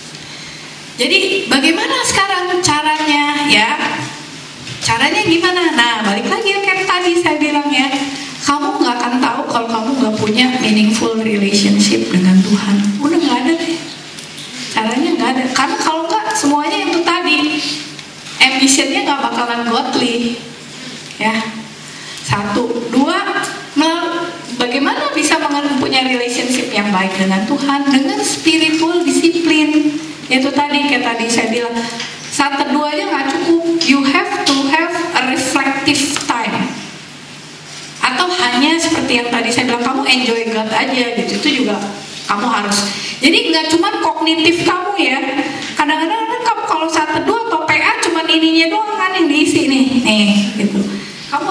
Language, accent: Indonesian, native